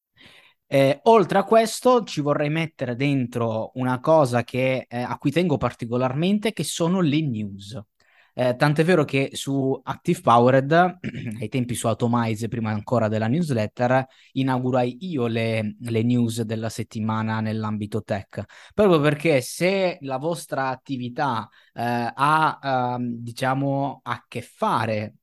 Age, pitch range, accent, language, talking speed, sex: 20-39, 110-145 Hz, native, Italian, 135 wpm, male